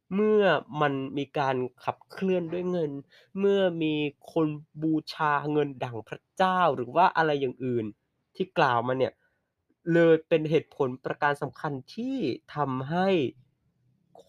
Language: Thai